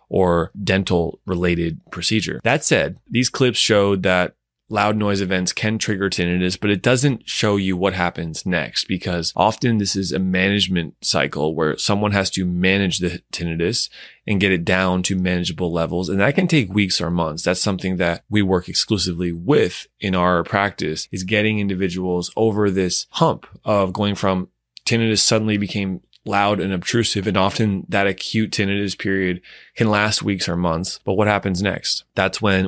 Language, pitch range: English, 90-100 Hz